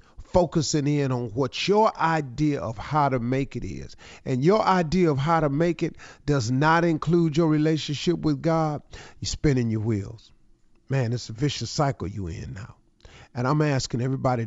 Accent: American